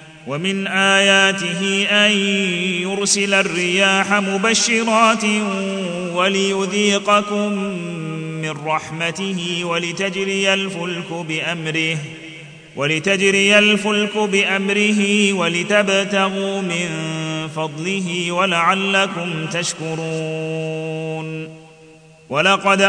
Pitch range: 160-195 Hz